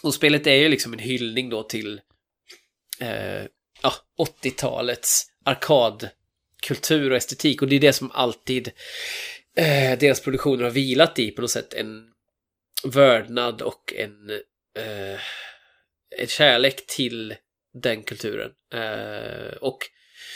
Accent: native